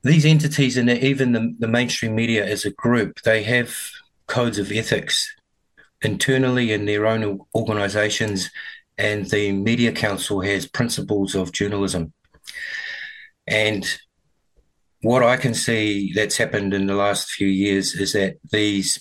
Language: English